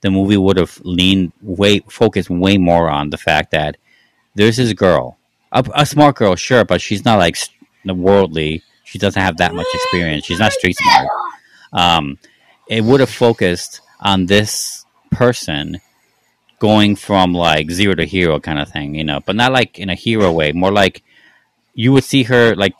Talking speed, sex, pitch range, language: 185 wpm, male, 85-110 Hz, English